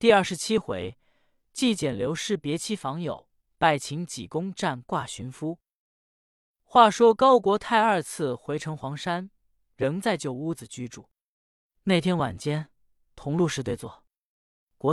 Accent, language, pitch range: native, Chinese, 130-190 Hz